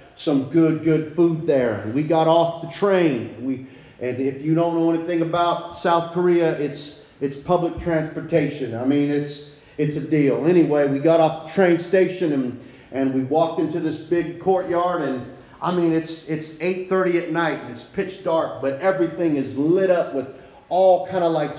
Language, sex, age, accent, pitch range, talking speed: English, male, 40-59, American, 140-170 Hz, 185 wpm